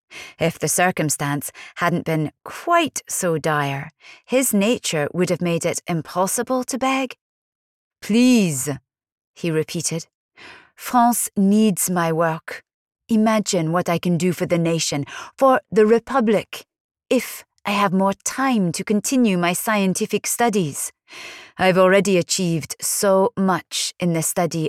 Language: English